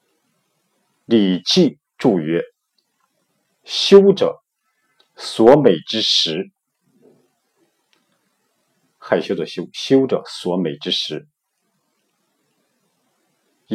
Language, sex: Chinese, male